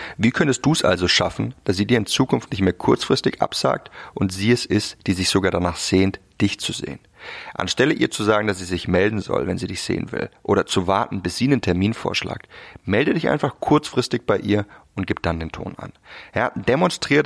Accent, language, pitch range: German, German, 95-120 Hz